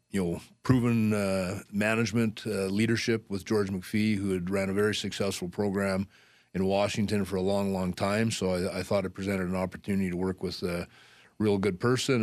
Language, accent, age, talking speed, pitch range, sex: English, American, 30-49, 190 wpm, 95-110 Hz, male